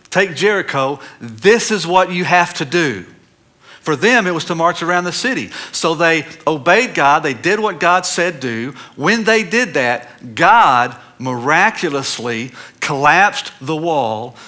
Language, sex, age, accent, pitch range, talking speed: English, male, 50-69, American, 120-175 Hz, 155 wpm